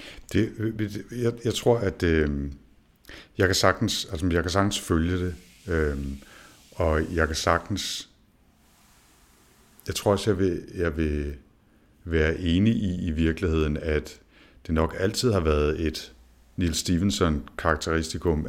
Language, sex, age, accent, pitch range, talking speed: Danish, male, 60-79, native, 80-95 Hz, 135 wpm